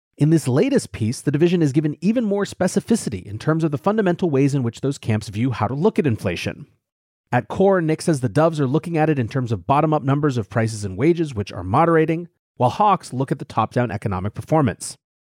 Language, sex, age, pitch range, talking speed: English, male, 30-49, 115-165 Hz, 235 wpm